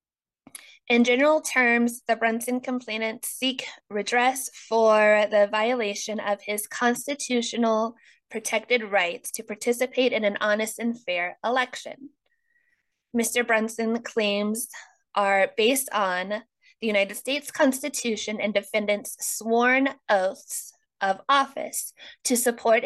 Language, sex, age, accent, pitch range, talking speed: English, female, 20-39, American, 205-245 Hz, 110 wpm